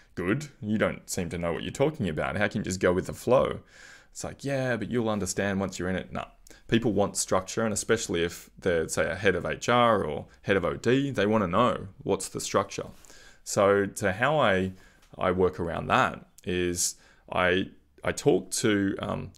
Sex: male